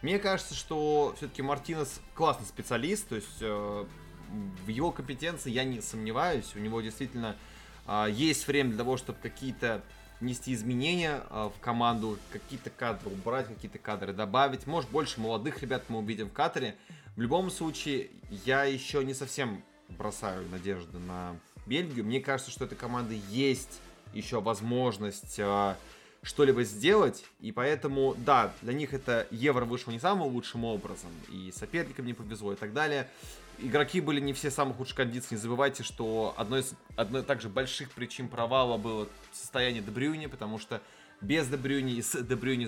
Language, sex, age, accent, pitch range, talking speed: Russian, male, 20-39, native, 110-140 Hz, 160 wpm